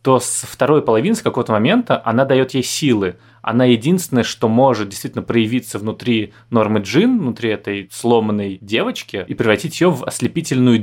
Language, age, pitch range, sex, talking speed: Russian, 20-39, 105-125 Hz, male, 160 wpm